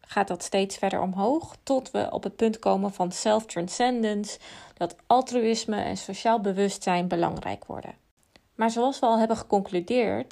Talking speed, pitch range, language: 150 wpm, 200-245 Hz, Dutch